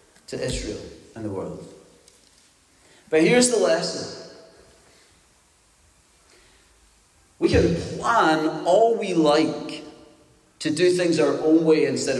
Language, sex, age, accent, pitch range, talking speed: English, male, 40-59, British, 115-160 Hz, 110 wpm